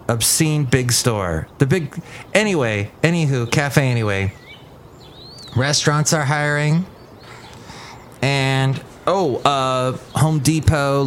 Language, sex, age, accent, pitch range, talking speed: English, male, 30-49, American, 110-145 Hz, 90 wpm